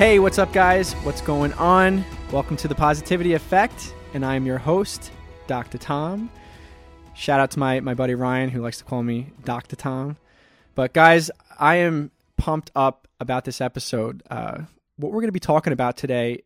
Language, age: English, 20-39